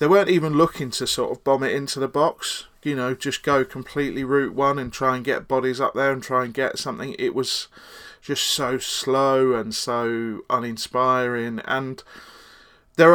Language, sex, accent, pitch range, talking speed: English, male, British, 115-135 Hz, 185 wpm